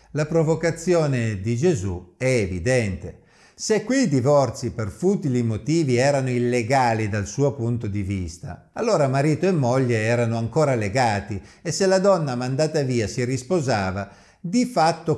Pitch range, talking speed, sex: 110-160 Hz, 145 wpm, male